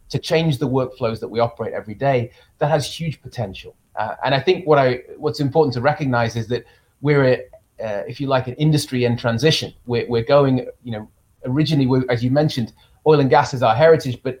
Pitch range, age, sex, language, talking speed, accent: 120-145 Hz, 30-49, male, English, 215 wpm, British